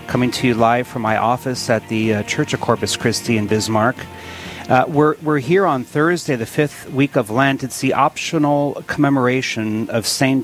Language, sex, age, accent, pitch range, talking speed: English, male, 40-59, American, 110-135 Hz, 190 wpm